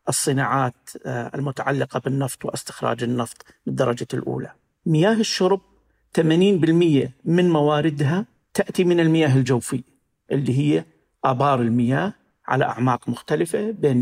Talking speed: 105 wpm